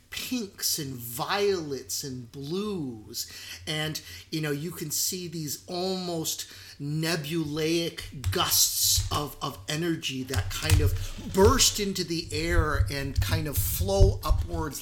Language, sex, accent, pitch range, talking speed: English, male, American, 120-190 Hz, 120 wpm